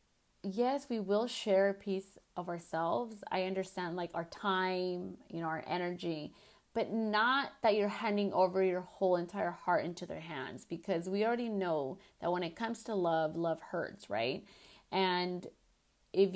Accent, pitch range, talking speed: American, 180-210 Hz, 165 wpm